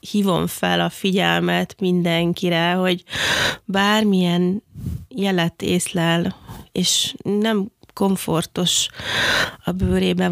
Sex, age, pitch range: female, 20-39, 170-195 Hz